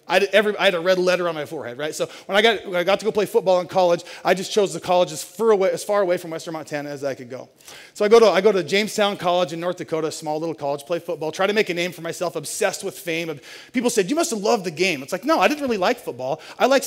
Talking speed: 305 wpm